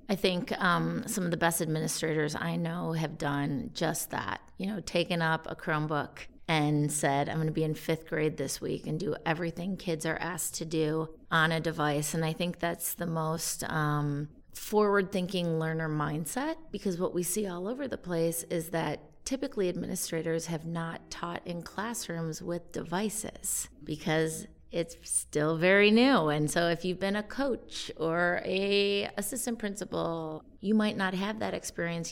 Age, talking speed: 30-49, 175 wpm